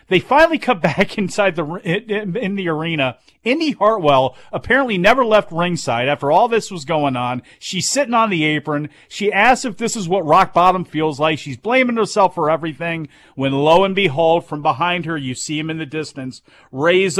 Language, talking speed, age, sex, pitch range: English, 190 wpm, 40-59, male, 150-200 Hz